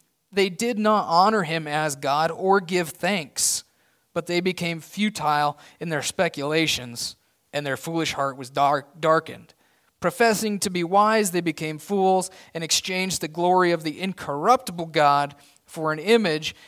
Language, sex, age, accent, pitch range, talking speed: English, male, 30-49, American, 150-195 Hz, 150 wpm